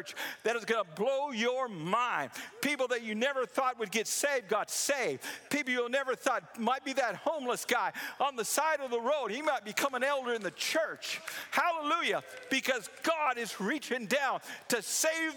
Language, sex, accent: English, male, American